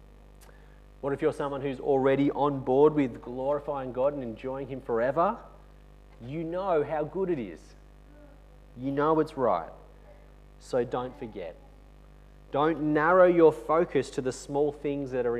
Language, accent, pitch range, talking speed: English, Australian, 125-155 Hz, 150 wpm